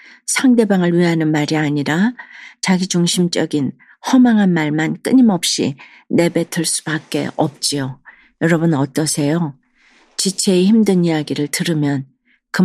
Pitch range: 155-195 Hz